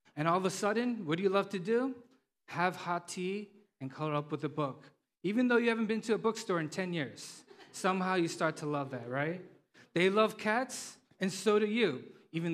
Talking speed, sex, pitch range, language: 220 wpm, male, 150-200 Hz, English